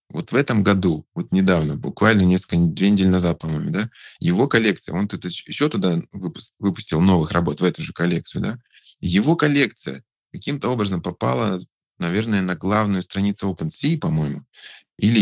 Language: Russian